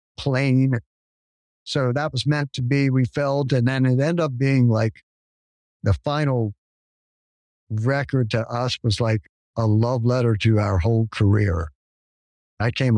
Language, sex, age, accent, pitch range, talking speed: English, male, 50-69, American, 105-130 Hz, 150 wpm